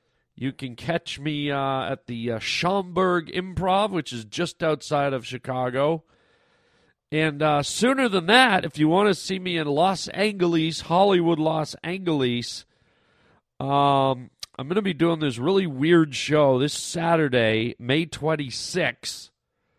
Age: 40-59